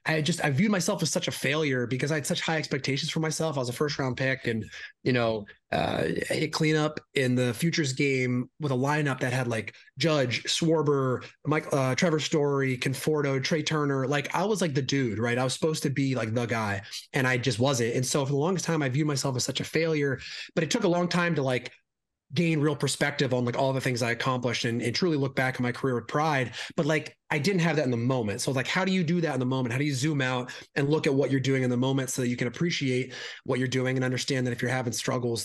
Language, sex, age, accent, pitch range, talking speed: English, male, 30-49, American, 125-155 Hz, 260 wpm